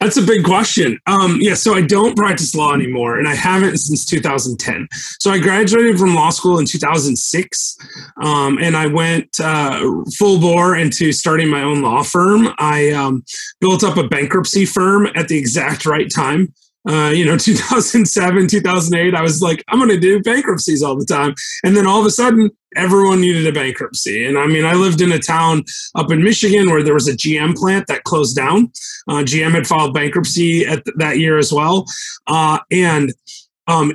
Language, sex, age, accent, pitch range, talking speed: English, male, 30-49, American, 150-190 Hz, 195 wpm